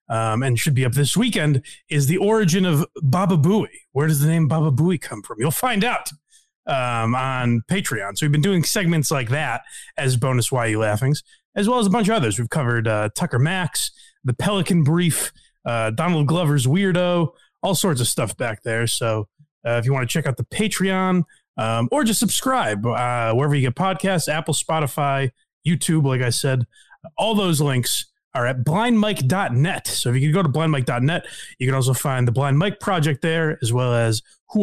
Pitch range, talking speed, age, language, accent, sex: 125-185 Hz, 200 wpm, 30-49, English, American, male